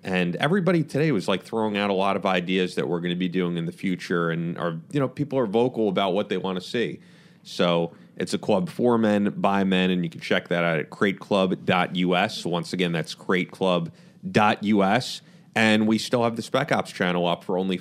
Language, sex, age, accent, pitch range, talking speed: English, male, 30-49, American, 90-115 Hz, 215 wpm